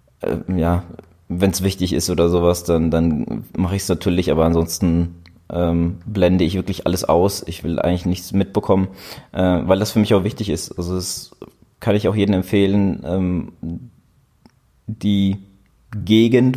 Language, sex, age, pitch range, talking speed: German, male, 20-39, 90-105 Hz, 160 wpm